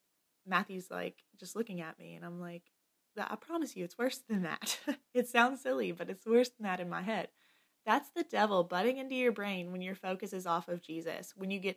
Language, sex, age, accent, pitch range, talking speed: English, female, 20-39, American, 180-220 Hz, 225 wpm